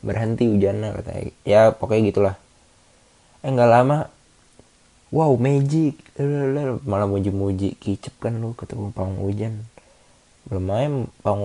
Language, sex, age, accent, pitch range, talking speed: Indonesian, male, 20-39, native, 100-120 Hz, 105 wpm